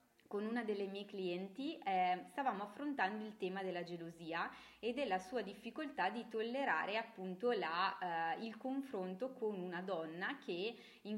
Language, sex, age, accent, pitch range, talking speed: Italian, female, 30-49, native, 185-245 Hz, 145 wpm